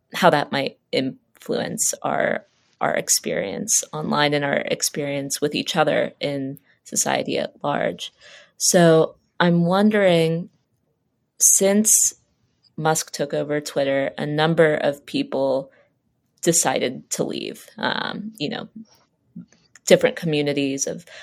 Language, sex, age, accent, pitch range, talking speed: English, female, 20-39, American, 145-185 Hz, 110 wpm